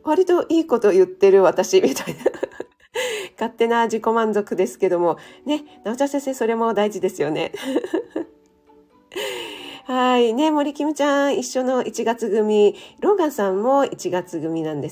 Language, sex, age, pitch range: Japanese, female, 40-59, 200-300 Hz